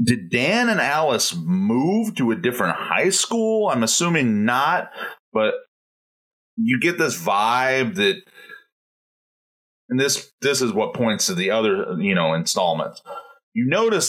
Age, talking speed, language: 30-49, 145 wpm, English